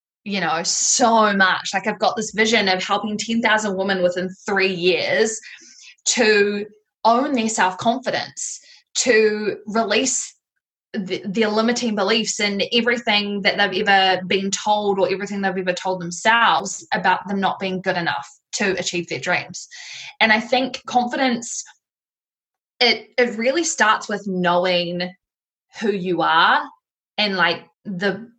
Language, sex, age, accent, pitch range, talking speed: English, female, 10-29, Australian, 185-235 Hz, 135 wpm